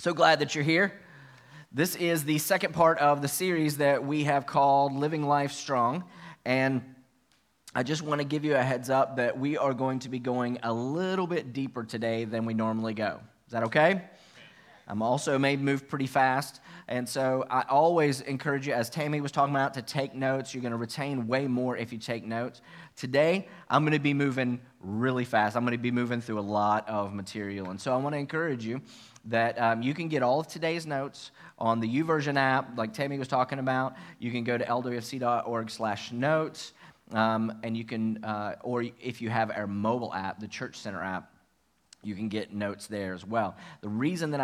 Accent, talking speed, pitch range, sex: American, 205 wpm, 115-140 Hz, male